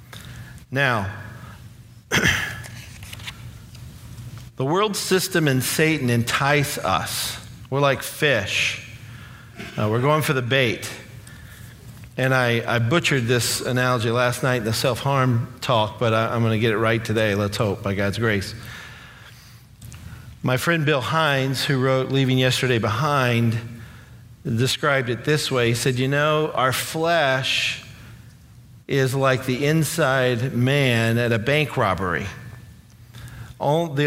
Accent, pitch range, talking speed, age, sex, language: American, 115-140 Hz, 125 wpm, 50-69, male, English